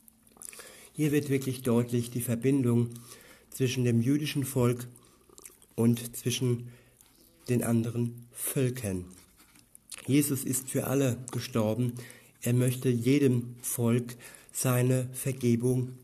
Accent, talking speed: German, 95 wpm